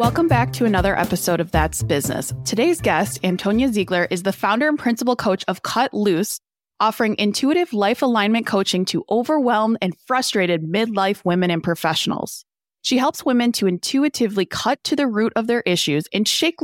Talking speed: 175 wpm